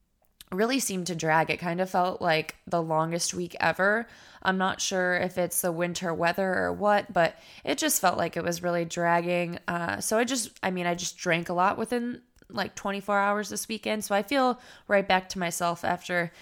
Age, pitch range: 20-39, 170-190 Hz